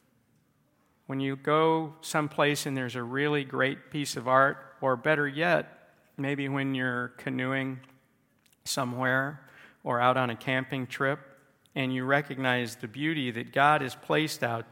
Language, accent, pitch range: English, American, 120-145 Hz